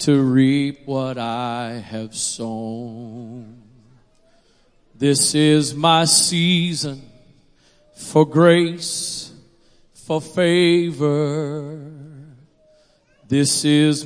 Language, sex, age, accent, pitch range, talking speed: English, male, 40-59, American, 130-160 Hz, 70 wpm